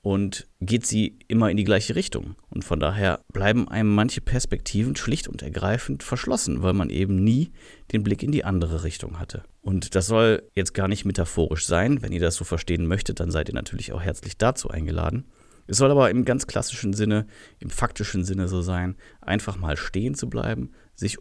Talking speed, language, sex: 200 wpm, German, male